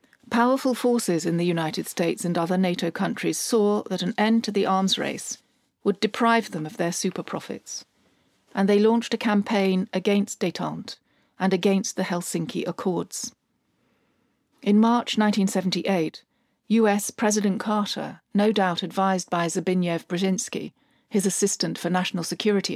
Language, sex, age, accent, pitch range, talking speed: English, female, 40-59, British, 180-225 Hz, 140 wpm